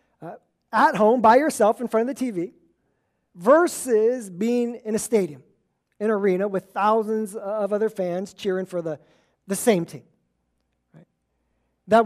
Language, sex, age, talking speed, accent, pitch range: English, male, 40-59, 140 wpm, American, 200-255 Hz